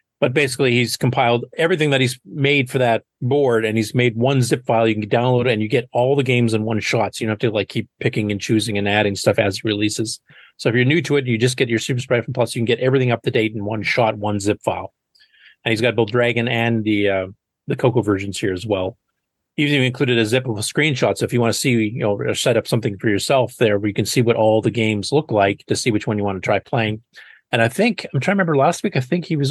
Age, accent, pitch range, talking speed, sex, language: 40-59, American, 110-140 Hz, 285 wpm, male, English